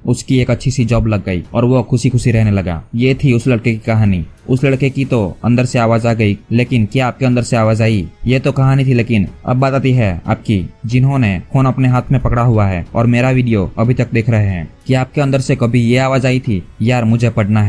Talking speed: 250 wpm